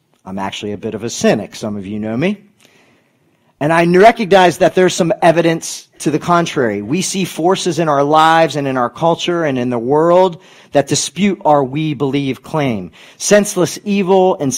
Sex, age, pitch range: male, 40-59, 125-170 Hz